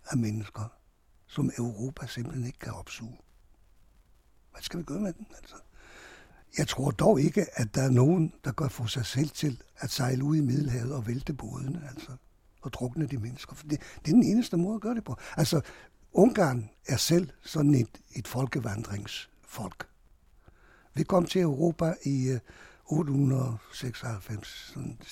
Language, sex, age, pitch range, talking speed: Danish, male, 60-79, 120-170 Hz, 165 wpm